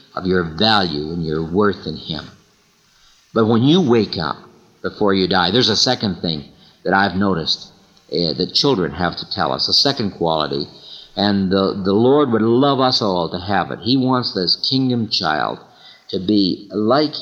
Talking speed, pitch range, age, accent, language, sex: 180 wpm, 90-120 Hz, 50-69, American, English, male